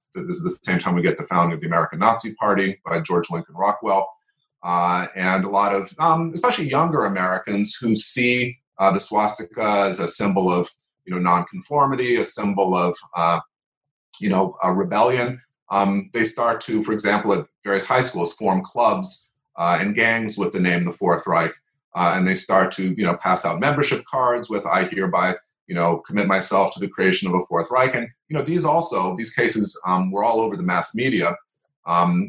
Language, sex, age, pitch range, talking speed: English, male, 30-49, 95-125 Hz, 205 wpm